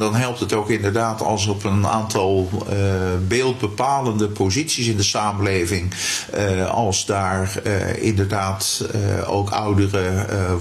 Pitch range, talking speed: 100-115 Hz, 135 wpm